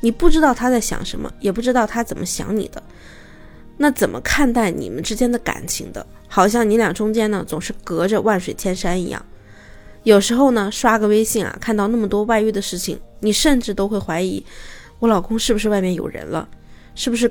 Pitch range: 190-235 Hz